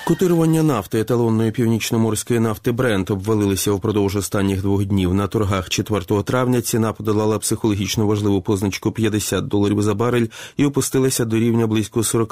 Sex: male